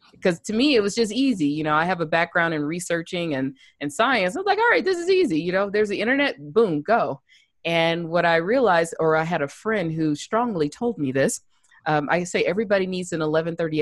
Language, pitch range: English, 160-195 Hz